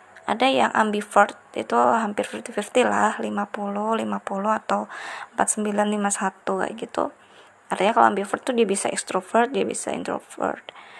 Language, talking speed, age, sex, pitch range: Indonesian, 120 wpm, 20-39, female, 205-230 Hz